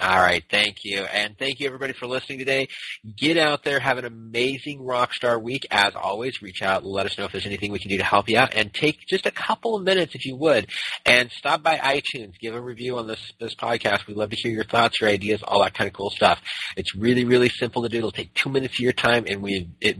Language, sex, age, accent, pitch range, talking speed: English, male, 30-49, American, 90-125 Hz, 260 wpm